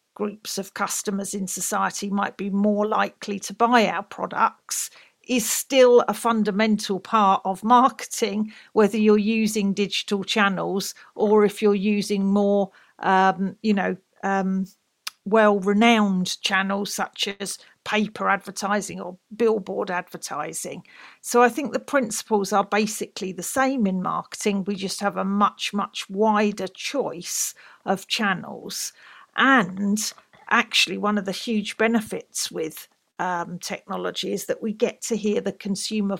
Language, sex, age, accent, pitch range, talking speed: English, female, 50-69, British, 195-220 Hz, 135 wpm